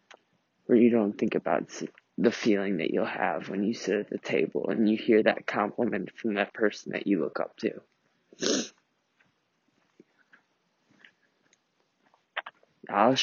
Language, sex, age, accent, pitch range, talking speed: English, male, 20-39, American, 110-125 Hz, 135 wpm